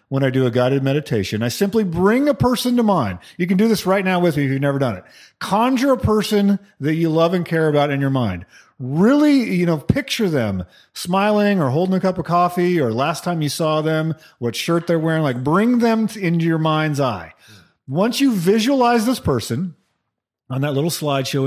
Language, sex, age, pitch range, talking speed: English, male, 40-59, 125-195 Hz, 210 wpm